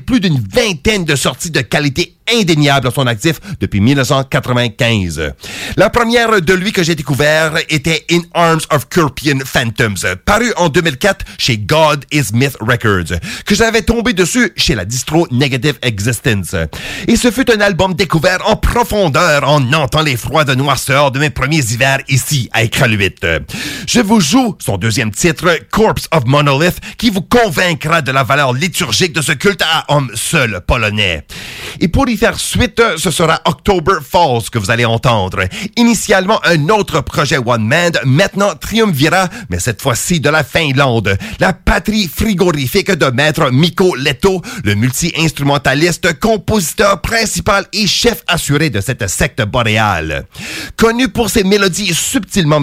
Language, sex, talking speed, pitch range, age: English, male, 155 wpm, 135-190 Hz, 40-59